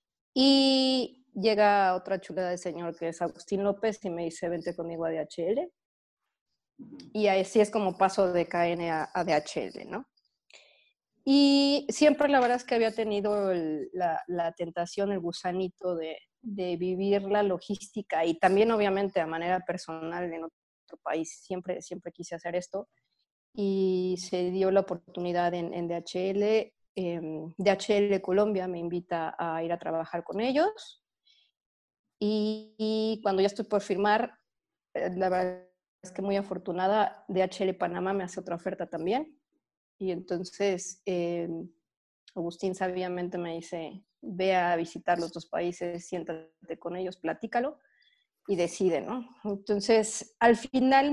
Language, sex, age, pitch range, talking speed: Spanish, female, 30-49, 175-215 Hz, 145 wpm